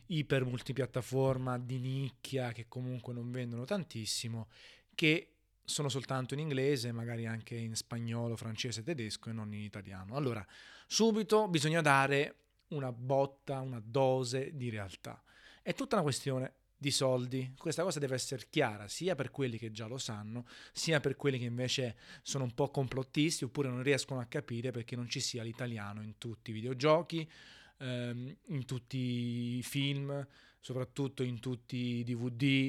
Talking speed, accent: 155 wpm, native